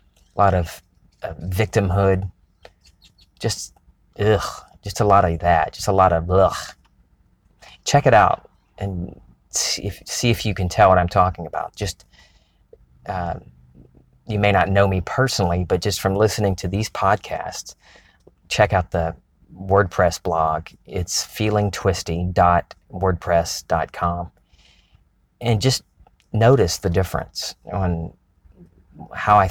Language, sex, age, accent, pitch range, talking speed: English, male, 30-49, American, 85-100 Hz, 125 wpm